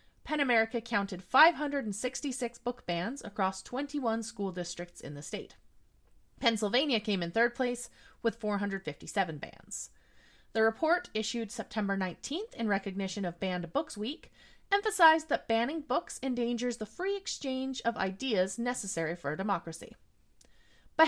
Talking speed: 135 wpm